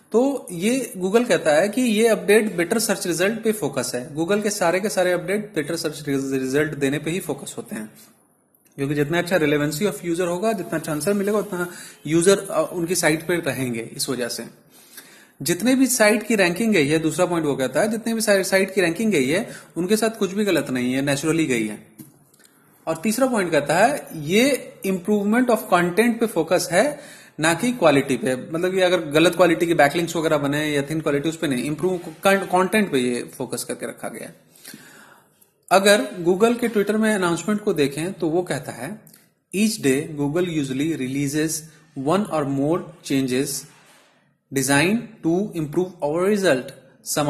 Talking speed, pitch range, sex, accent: 185 wpm, 145-200 Hz, male, native